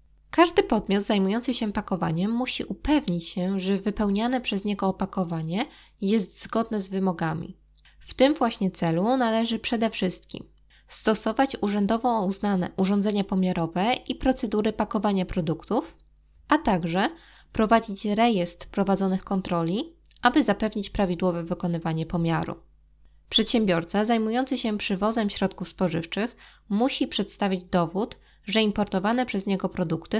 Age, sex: 20-39, female